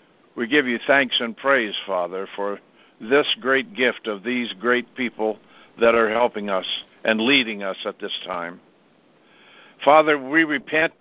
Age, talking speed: 60-79, 155 wpm